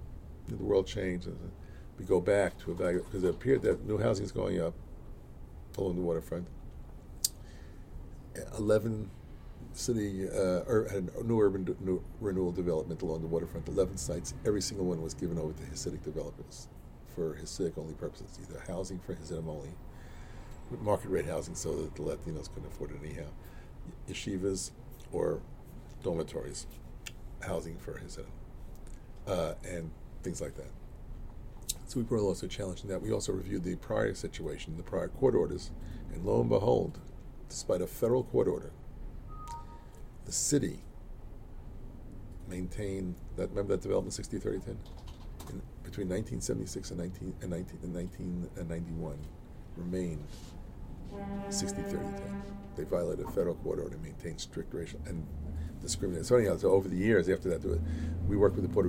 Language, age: English, 50-69